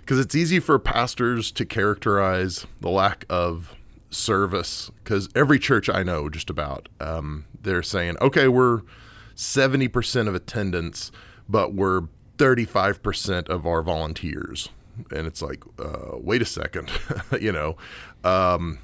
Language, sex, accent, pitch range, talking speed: English, male, American, 85-115 Hz, 135 wpm